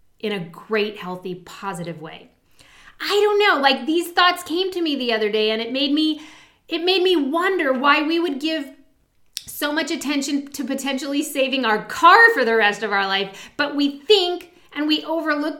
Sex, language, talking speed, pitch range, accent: female, English, 190 wpm, 215-300 Hz, American